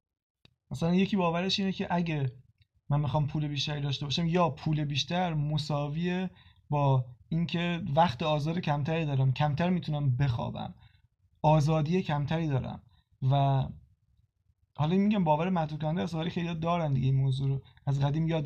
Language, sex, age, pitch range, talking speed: Persian, male, 20-39, 140-175 Hz, 140 wpm